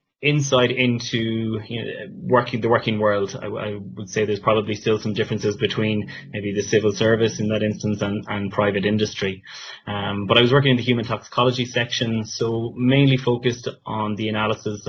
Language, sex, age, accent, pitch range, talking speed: English, male, 20-39, Irish, 105-120 Hz, 180 wpm